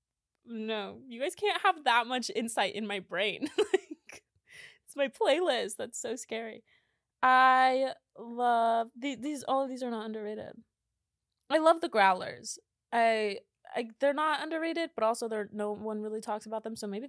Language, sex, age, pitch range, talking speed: English, female, 20-39, 205-290 Hz, 170 wpm